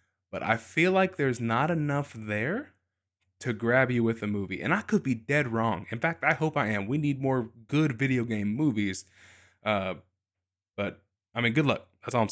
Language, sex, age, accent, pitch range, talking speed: English, male, 20-39, American, 95-130 Hz, 205 wpm